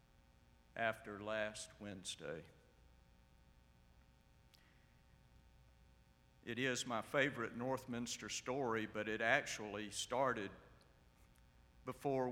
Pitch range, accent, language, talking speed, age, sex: 95-135 Hz, American, English, 70 wpm, 60-79, male